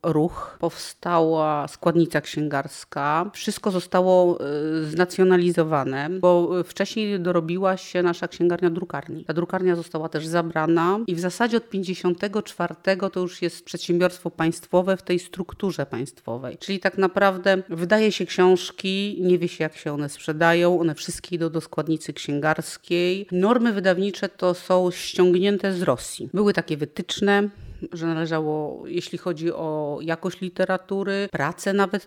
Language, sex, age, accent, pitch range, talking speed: Polish, female, 30-49, native, 165-190 Hz, 135 wpm